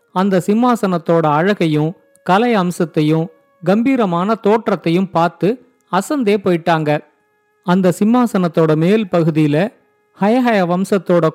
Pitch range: 170-225 Hz